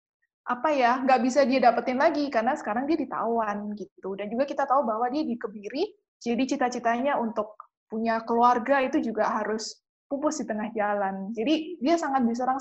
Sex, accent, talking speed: female, native, 165 wpm